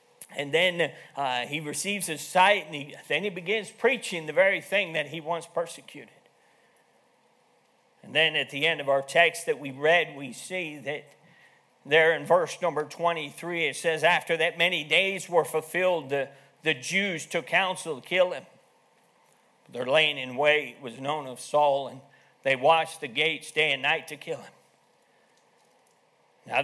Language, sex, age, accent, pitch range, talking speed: English, male, 50-69, American, 145-185 Hz, 165 wpm